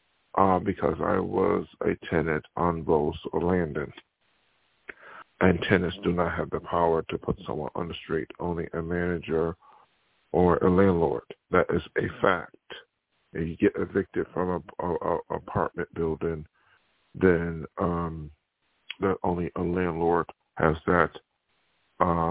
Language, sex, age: English, male, 50-69